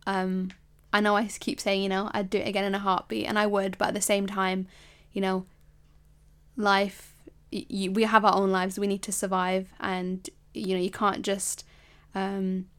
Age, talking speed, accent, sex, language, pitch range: 10-29, 205 wpm, British, female, English, 185-205 Hz